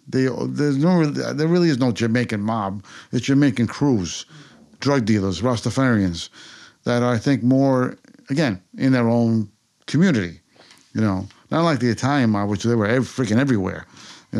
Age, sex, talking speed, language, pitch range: 50-69, male, 165 wpm, English, 110-140 Hz